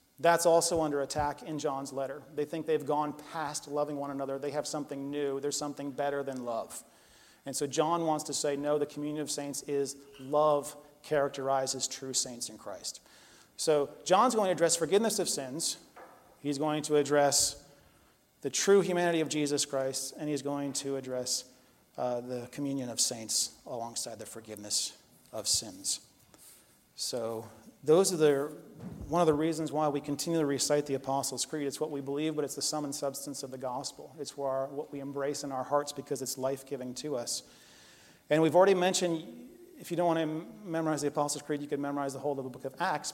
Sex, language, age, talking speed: male, English, 40-59, 195 wpm